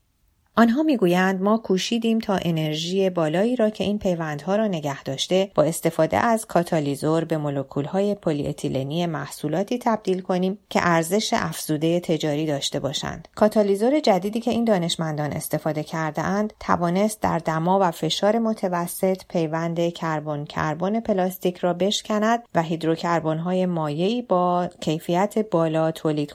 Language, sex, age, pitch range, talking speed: Persian, female, 30-49, 160-200 Hz, 125 wpm